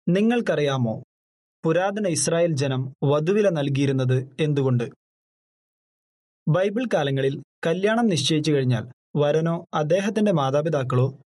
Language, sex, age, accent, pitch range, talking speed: Malayalam, male, 30-49, native, 140-185 Hz, 80 wpm